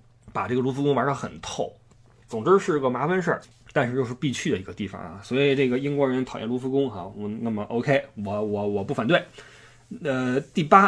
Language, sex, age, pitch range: Chinese, male, 20-39, 115-145 Hz